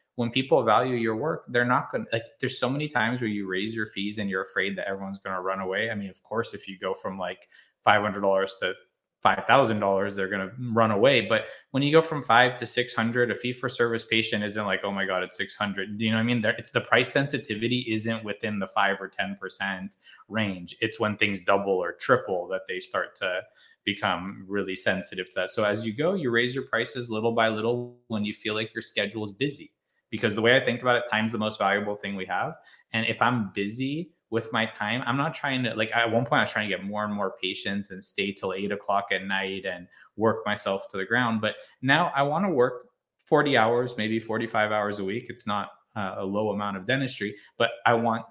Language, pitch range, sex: English, 100-120 Hz, male